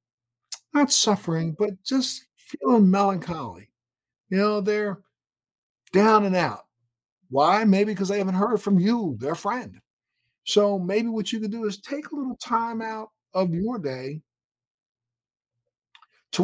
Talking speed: 140 wpm